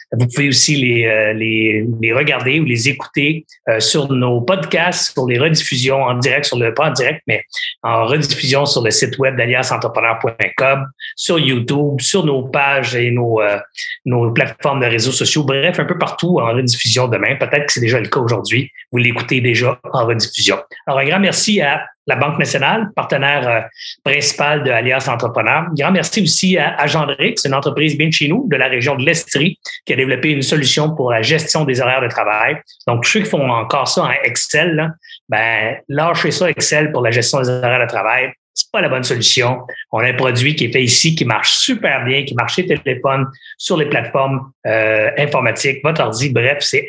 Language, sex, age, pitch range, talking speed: French, male, 30-49, 120-155 Hz, 205 wpm